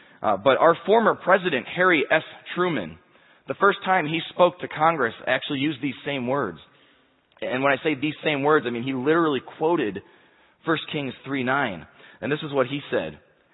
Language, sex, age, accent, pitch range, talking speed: English, male, 30-49, American, 130-165 Hz, 180 wpm